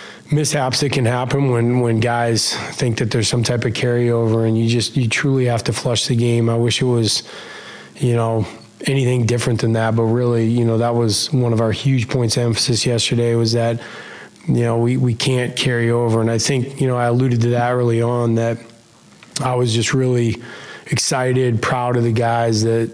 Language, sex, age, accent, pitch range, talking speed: English, male, 20-39, American, 115-125 Hz, 205 wpm